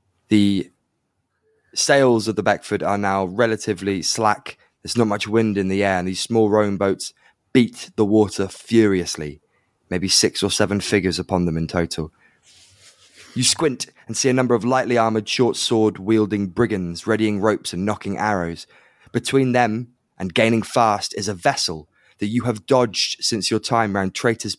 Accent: British